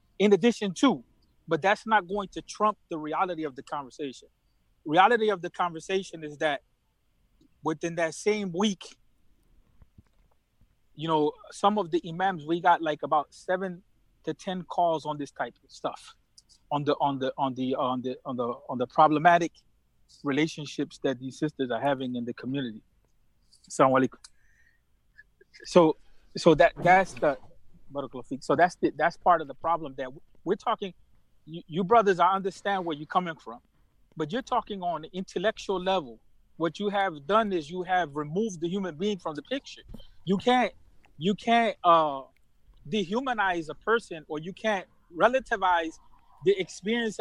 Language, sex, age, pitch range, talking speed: English, male, 30-49, 150-205 Hz, 165 wpm